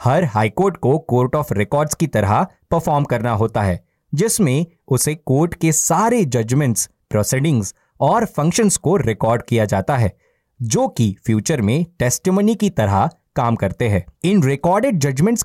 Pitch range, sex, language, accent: 120-175 Hz, male, Hindi, native